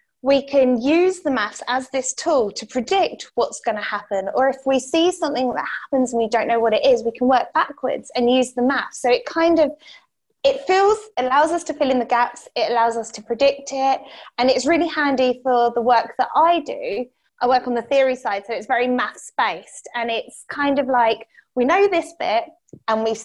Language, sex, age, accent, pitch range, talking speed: English, female, 20-39, British, 230-290 Hz, 220 wpm